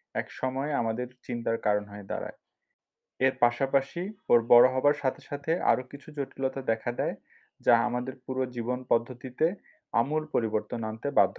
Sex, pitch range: male, 120-150 Hz